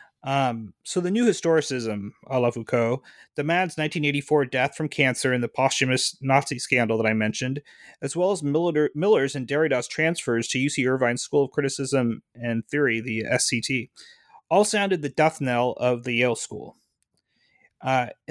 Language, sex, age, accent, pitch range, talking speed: English, male, 30-49, American, 130-160 Hz, 165 wpm